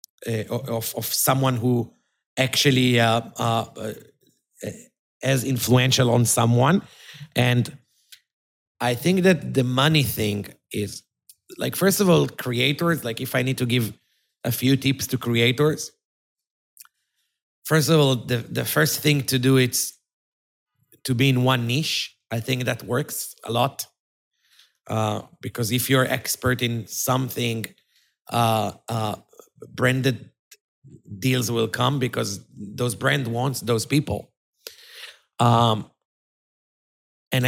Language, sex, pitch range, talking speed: English, male, 115-140 Hz, 125 wpm